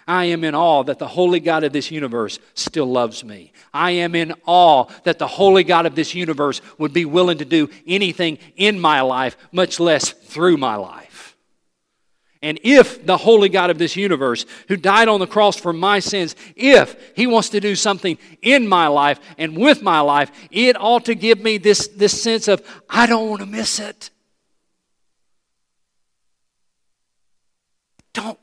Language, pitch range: English, 150-200 Hz